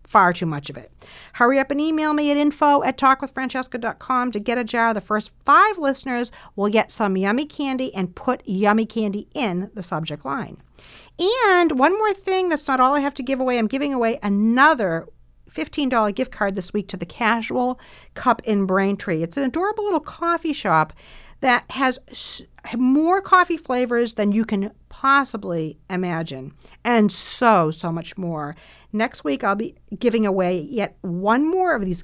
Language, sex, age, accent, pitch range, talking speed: English, female, 50-69, American, 175-255 Hz, 175 wpm